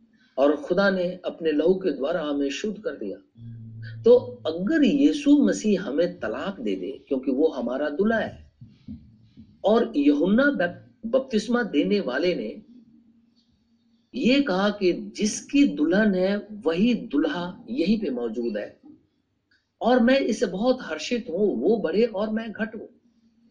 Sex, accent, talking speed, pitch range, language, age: male, native, 130 wpm, 180-245 Hz, Hindi, 50-69